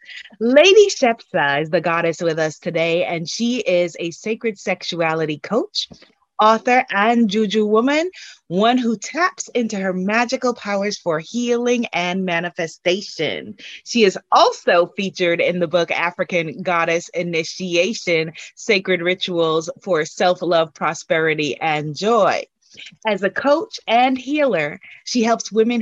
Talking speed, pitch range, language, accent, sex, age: 130 wpm, 165-230 Hz, English, American, female, 30-49